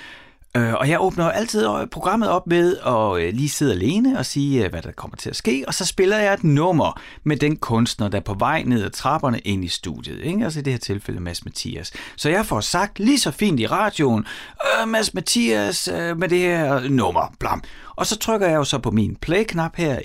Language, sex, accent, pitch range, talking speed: Danish, male, native, 105-160 Hz, 205 wpm